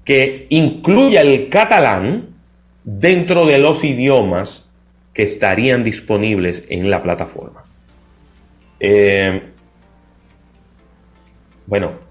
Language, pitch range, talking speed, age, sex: Spanish, 85-135 Hz, 80 wpm, 30-49, male